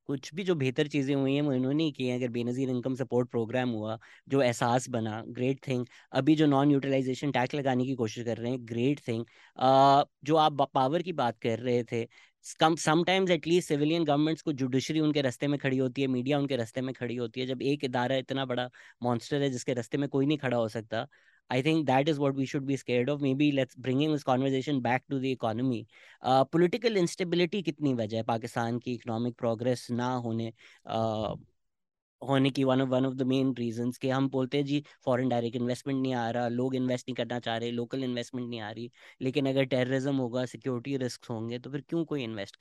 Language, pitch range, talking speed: English, 120-140 Hz, 175 wpm